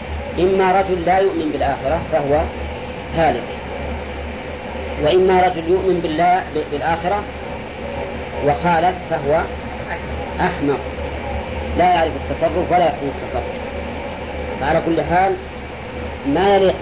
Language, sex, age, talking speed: Arabic, female, 40-59, 95 wpm